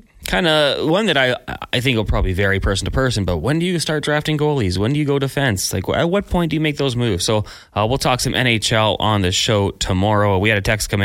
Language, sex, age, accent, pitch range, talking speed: English, male, 20-39, American, 100-120 Hz, 265 wpm